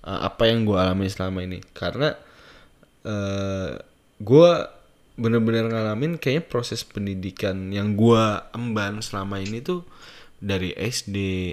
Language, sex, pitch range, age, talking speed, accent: Indonesian, male, 105-125 Hz, 10-29, 120 wpm, native